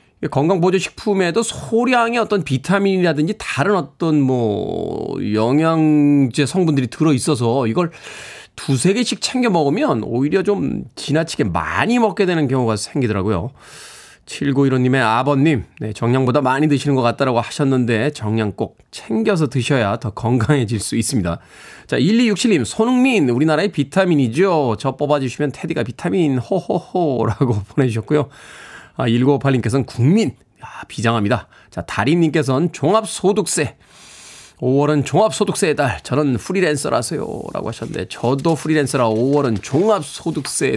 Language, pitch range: Korean, 120-180 Hz